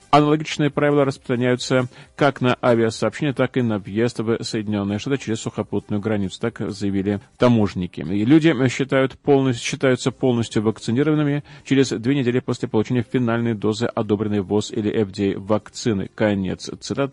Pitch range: 105-135 Hz